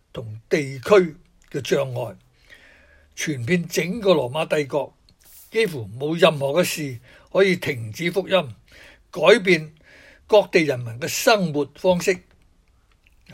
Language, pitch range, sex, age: Chinese, 130-195 Hz, male, 60-79